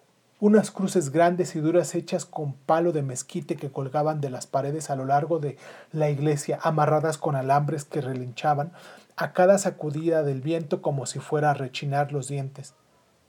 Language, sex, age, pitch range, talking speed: Spanish, male, 40-59, 145-175 Hz, 170 wpm